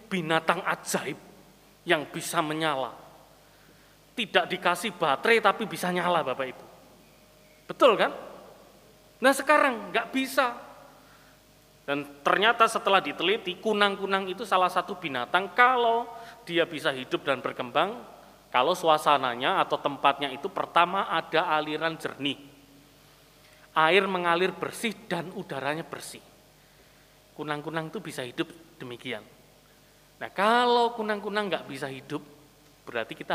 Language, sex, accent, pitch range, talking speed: Indonesian, male, native, 150-205 Hz, 110 wpm